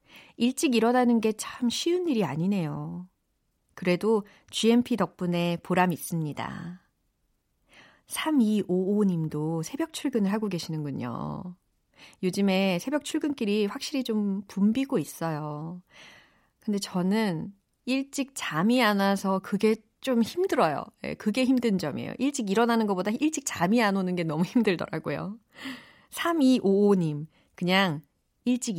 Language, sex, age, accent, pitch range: Korean, female, 40-59, native, 170-245 Hz